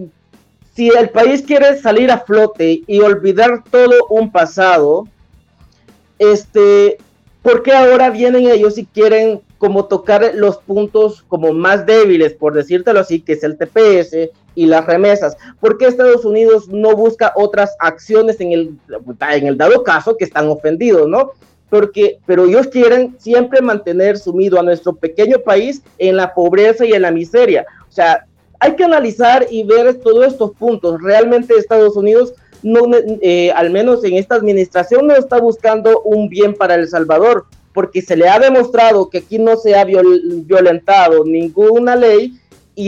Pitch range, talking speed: 185-235 Hz, 160 wpm